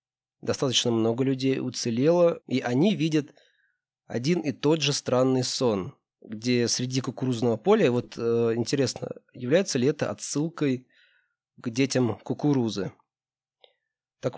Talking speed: 115 wpm